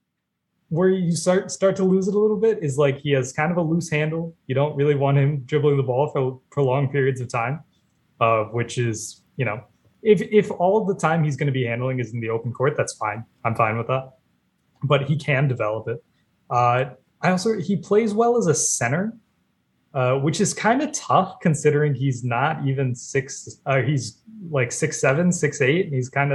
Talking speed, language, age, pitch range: 210 wpm, English, 20-39, 120-155 Hz